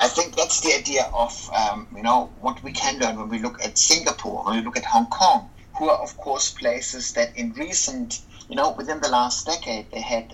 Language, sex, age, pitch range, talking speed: Portuguese, male, 60-79, 115-165 Hz, 230 wpm